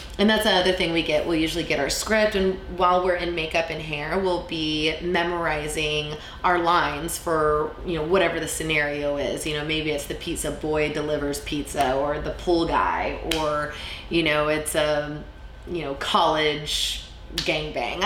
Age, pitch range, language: 20-39, 150-185 Hz, English